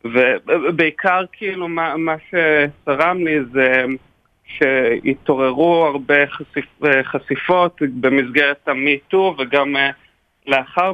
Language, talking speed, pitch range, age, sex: Hebrew, 80 wpm, 130-160 Hz, 40-59, male